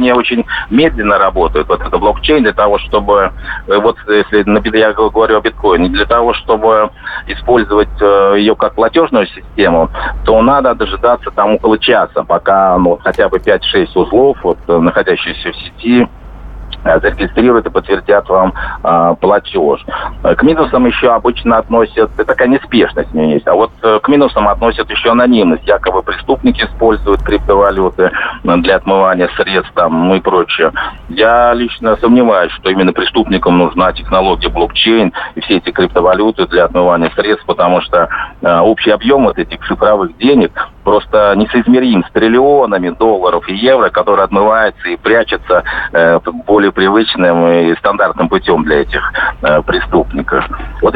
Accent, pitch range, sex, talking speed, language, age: native, 95-120 Hz, male, 140 wpm, Russian, 40-59